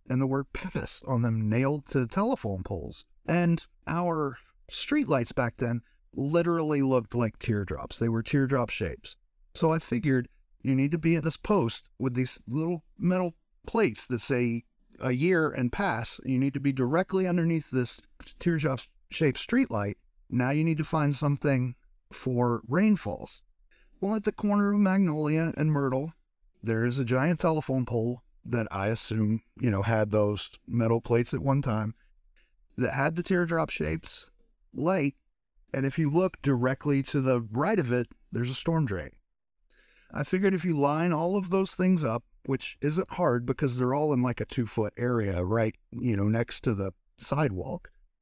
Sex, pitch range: male, 115-165 Hz